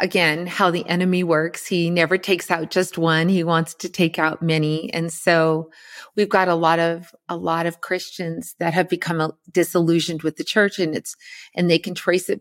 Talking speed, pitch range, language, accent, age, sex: 195 wpm, 170-205 Hz, English, American, 40-59, female